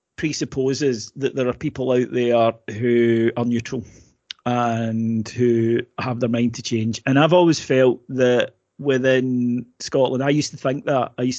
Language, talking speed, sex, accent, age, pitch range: English, 165 wpm, male, British, 30-49, 120-135 Hz